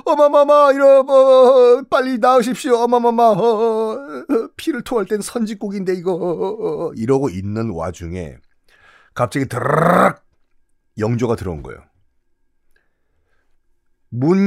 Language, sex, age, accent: Korean, male, 40-59, native